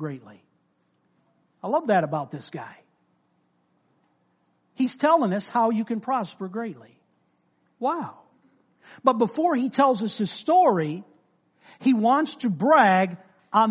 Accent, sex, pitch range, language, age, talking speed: American, male, 180-270 Hz, English, 50-69, 125 wpm